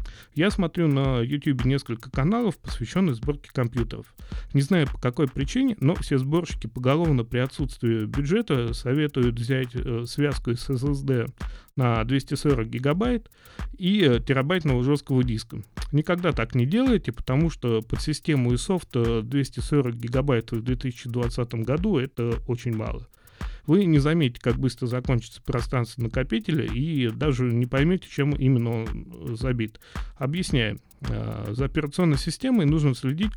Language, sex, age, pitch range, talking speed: Russian, male, 30-49, 120-150 Hz, 135 wpm